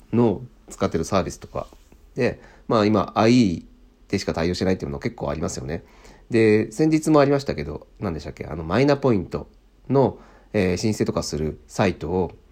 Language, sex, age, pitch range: Japanese, male, 40-59, 80-110 Hz